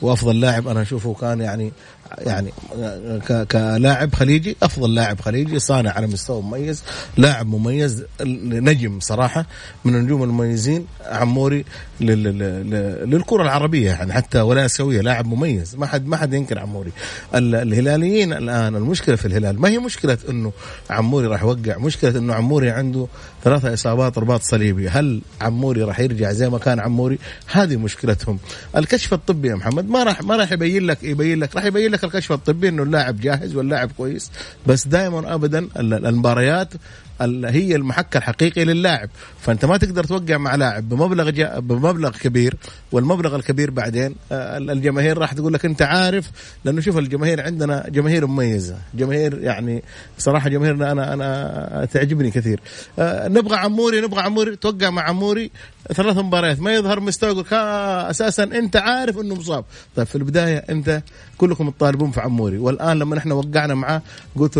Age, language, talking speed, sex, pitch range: 30-49, Arabic, 155 wpm, male, 120-160 Hz